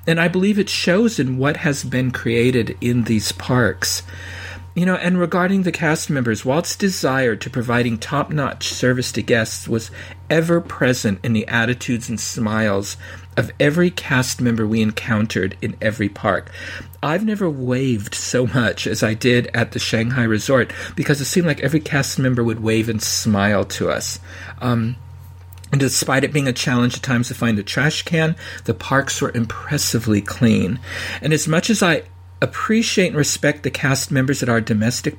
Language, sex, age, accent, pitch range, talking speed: English, male, 50-69, American, 105-145 Hz, 175 wpm